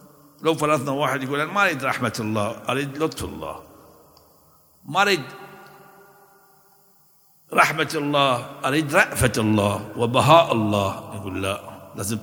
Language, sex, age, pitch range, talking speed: Arabic, male, 60-79, 115-165 Hz, 115 wpm